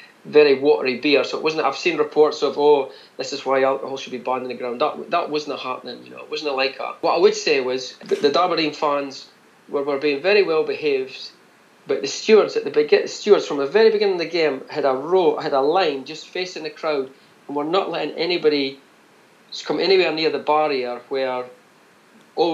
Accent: British